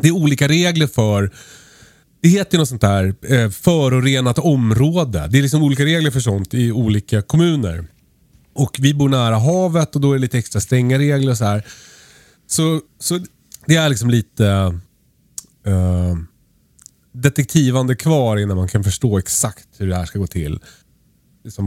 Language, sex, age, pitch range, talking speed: Swedish, male, 30-49, 100-140 Hz, 165 wpm